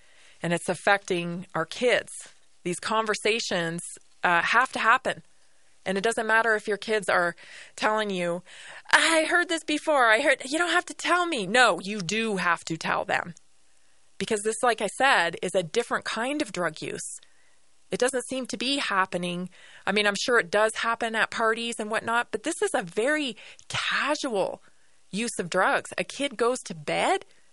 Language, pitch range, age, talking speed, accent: English, 190-275 Hz, 20-39, 180 wpm, American